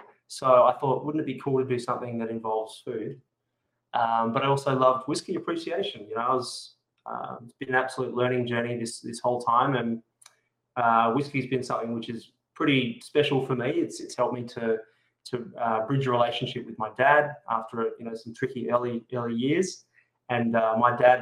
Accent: Australian